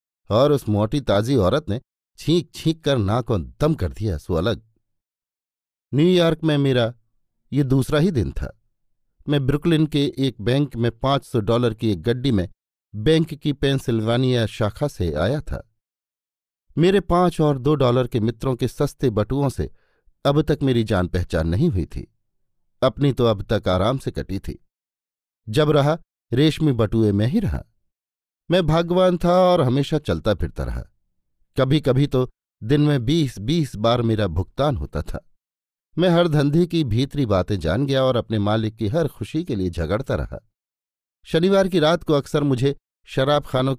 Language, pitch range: Hindi, 105-145 Hz